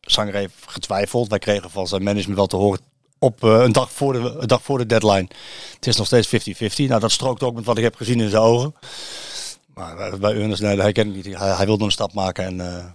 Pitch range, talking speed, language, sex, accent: 110-135 Hz, 250 wpm, Dutch, male, Dutch